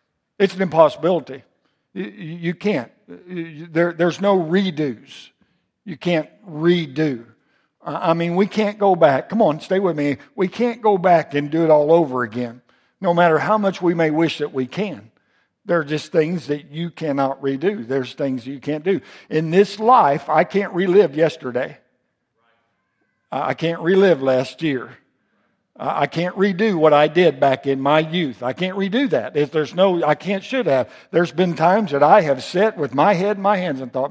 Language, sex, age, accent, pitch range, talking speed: English, male, 60-79, American, 140-185 Hz, 180 wpm